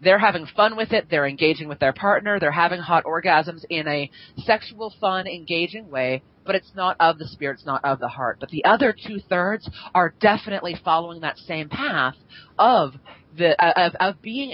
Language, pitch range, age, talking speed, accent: English, 155-210 Hz, 30-49, 195 wpm, American